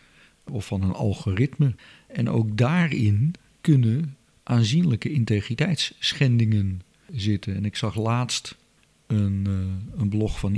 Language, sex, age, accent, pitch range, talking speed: Dutch, male, 50-69, Dutch, 100-120 Hz, 115 wpm